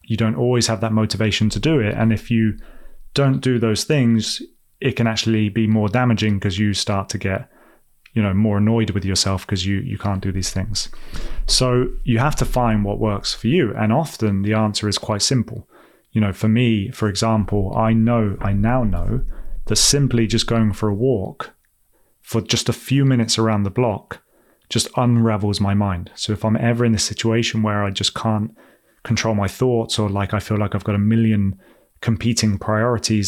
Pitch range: 100-115 Hz